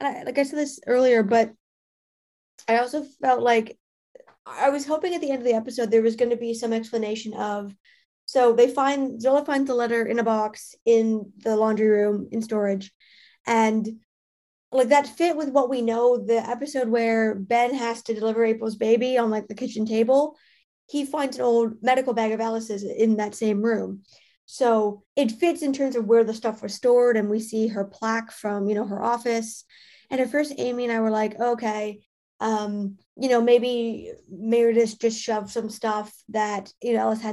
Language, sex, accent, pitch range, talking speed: English, female, American, 220-250 Hz, 195 wpm